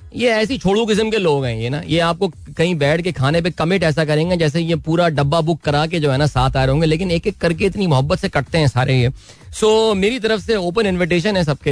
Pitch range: 125-160 Hz